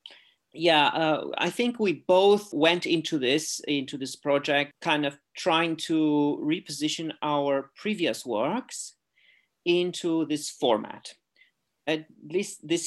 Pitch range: 130-160 Hz